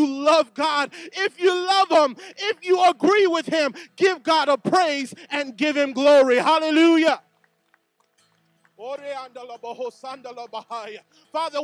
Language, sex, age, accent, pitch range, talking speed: English, male, 30-49, American, 265-315 Hz, 110 wpm